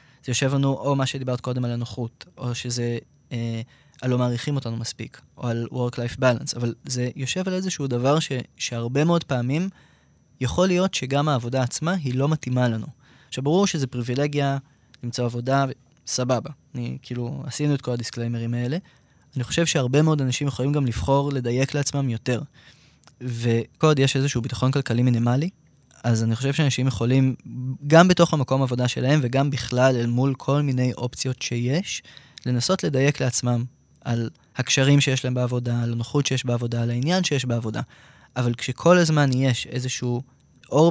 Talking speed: 160 wpm